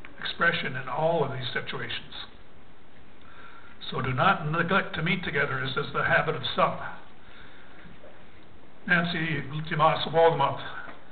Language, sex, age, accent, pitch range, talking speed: English, male, 60-79, American, 145-180 Hz, 120 wpm